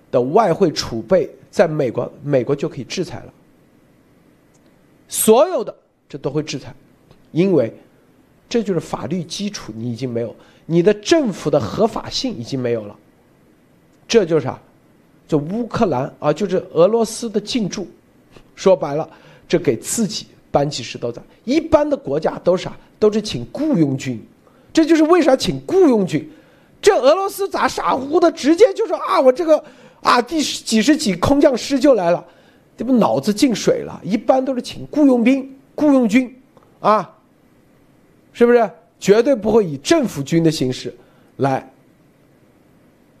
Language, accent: Chinese, native